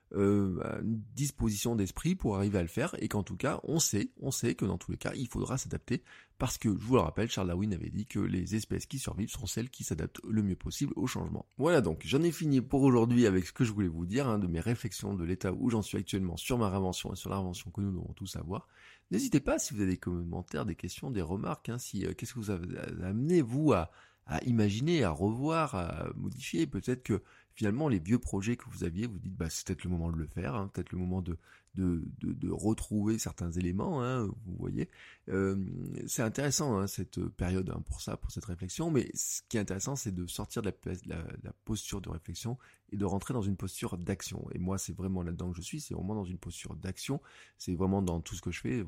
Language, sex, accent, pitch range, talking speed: French, male, French, 95-120 Hz, 245 wpm